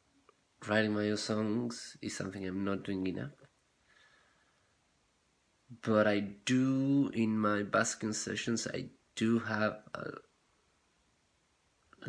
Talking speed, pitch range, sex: 110 wpm, 95-110 Hz, male